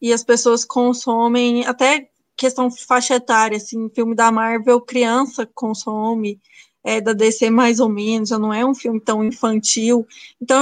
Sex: female